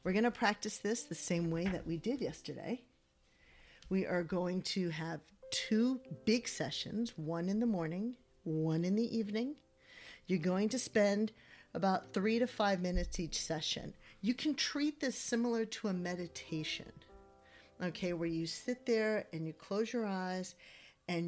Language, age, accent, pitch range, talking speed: English, 40-59, American, 165-215 Hz, 165 wpm